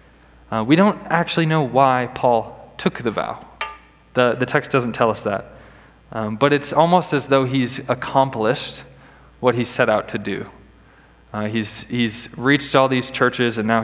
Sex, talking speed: male, 175 wpm